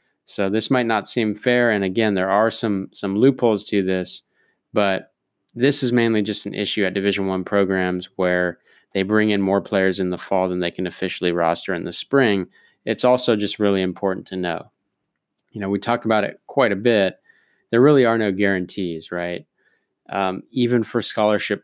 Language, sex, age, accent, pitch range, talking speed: English, male, 20-39, American, 95-115 Hz, 190 wpm